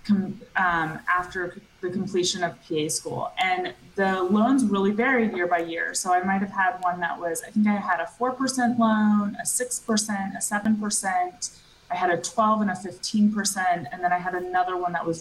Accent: American